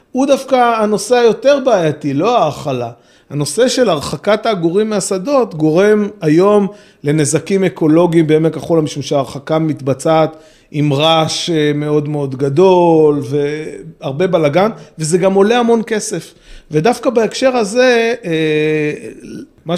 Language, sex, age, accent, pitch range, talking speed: Hebrew, male, 30-49, native, 150-195 Hz, 110 wpm